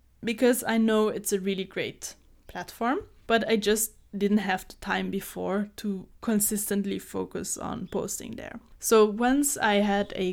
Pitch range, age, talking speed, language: 190-225 Hz, 10-29, 155 wpm, English